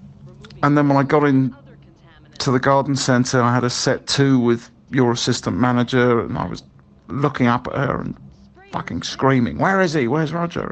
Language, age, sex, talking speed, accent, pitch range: English, 50-69, male, 190 wpm, British, 120-135 Hz